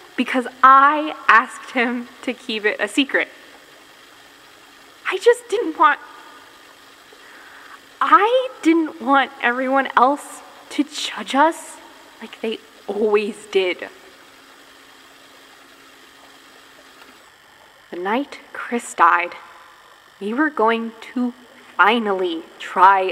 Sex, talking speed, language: female, 90 wpm, English